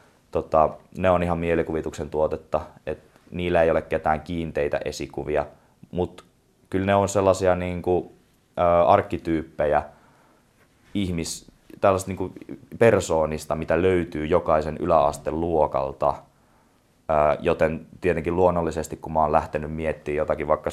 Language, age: Finnish, 20-39